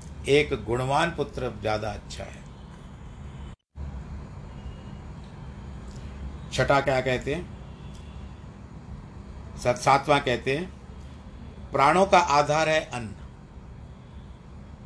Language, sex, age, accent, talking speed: Hindi, male, 50-69, native, 70 wpm